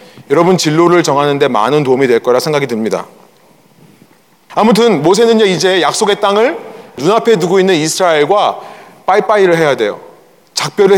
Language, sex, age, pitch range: Korean, male, 30-49, 185-260 Hz